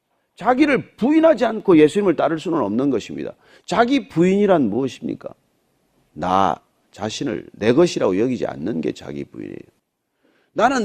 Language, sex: Korean, male